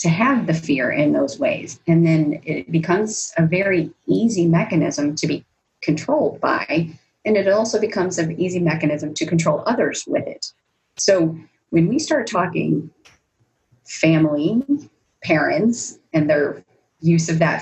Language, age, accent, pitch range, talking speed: English, 30-49, American, 155-225 Hz, 145 wpm